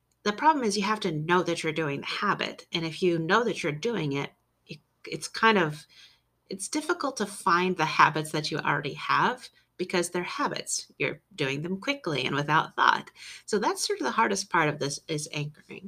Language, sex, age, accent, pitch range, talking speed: English, female, 30-49, American, 150-180 Hz, 210 wpm